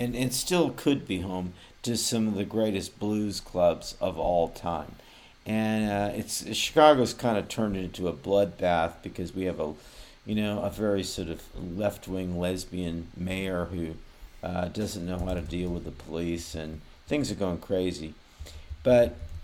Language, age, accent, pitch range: English, 50-69, American, 85-110 Hz